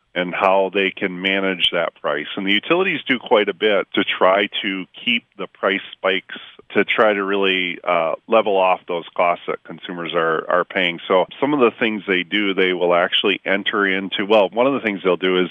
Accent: American